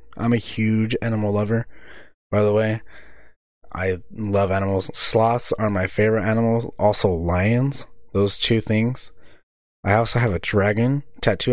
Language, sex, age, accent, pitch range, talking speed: English, male, 20-39, American, 95-115 Hz, 140 wpm